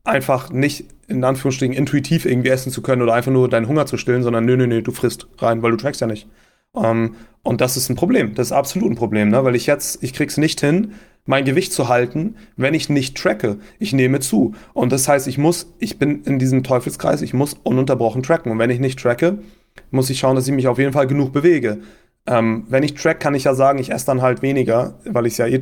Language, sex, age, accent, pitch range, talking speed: German, male, 30-49, German, 120-140 Hz, 245 wpm